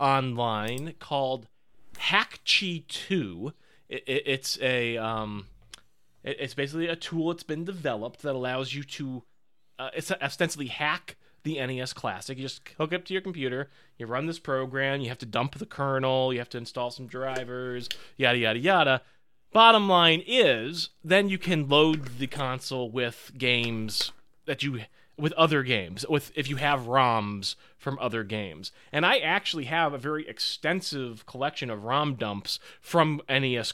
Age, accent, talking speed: 30-49, American, 160 wpm